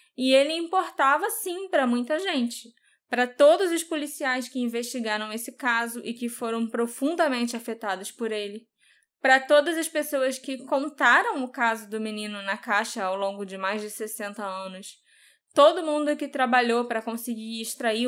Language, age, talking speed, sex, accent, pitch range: Portuguese, 10-29, 160 wpm, female, Brazilian, 220-275 Hz